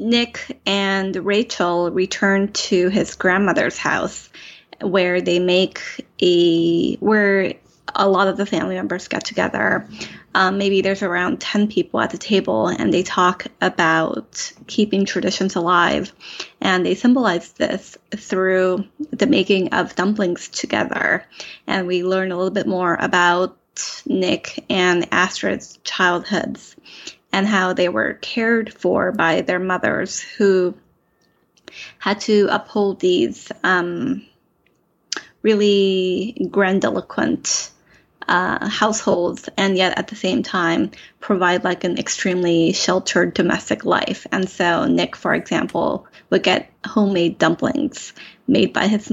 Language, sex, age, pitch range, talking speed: English, female, 20-39, 180-210 Hz, 125 wpm